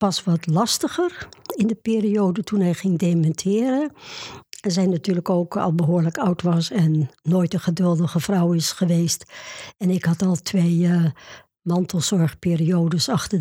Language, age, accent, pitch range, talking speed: Dutch, 60-79, Dutch, 170-195 Hz, 145 wpm